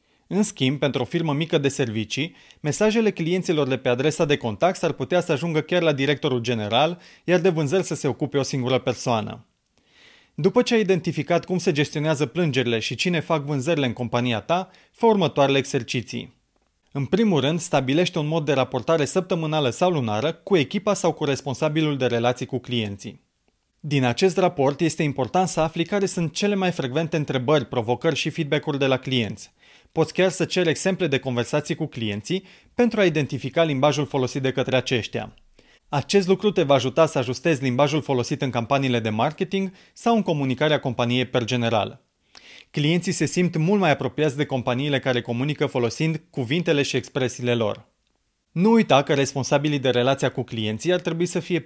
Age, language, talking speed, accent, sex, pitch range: 30-49, Romanian, 175 wpm, native, male, 130-170 Hz